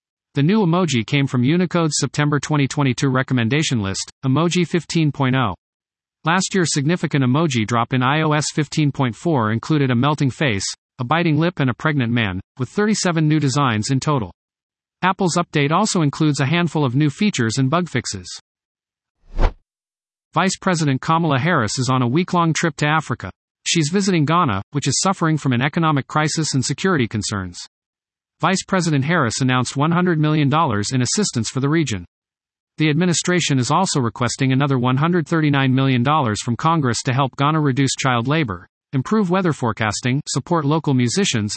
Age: 50-69